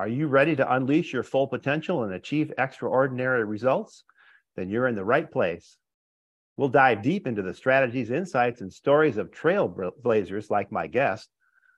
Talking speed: 165 wpm